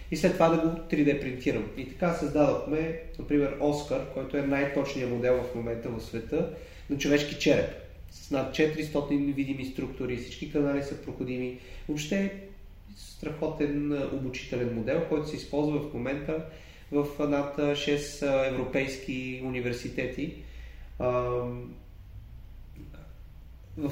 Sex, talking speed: male, 120 wpm